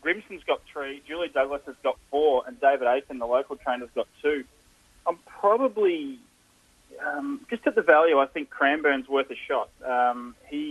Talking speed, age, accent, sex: 180 wpm, 20-39, Australian, male